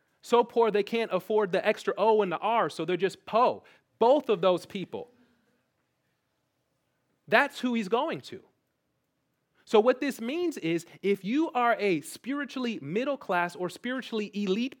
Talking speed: 155 wpm